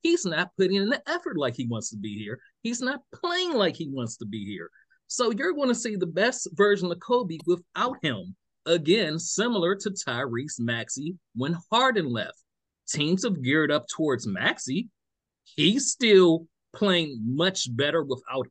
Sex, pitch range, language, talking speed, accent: male, 140-210 Hz, English, 170 wpm, American